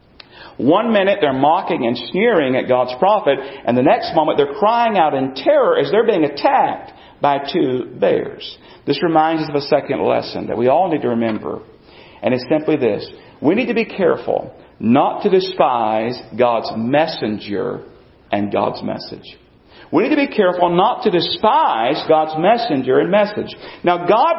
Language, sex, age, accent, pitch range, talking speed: English, male, 50-69, American, 145-200 Hz, 170 wpm